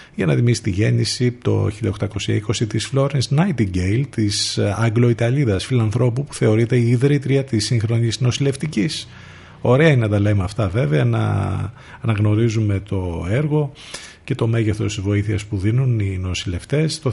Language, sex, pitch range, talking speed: Greek, male, 100-120 Hz, 145 wpm